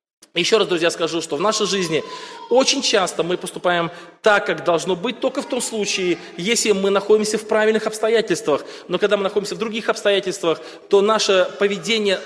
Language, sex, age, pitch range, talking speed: Russian, male, 20-39, 180-220 Hz, 175 wpm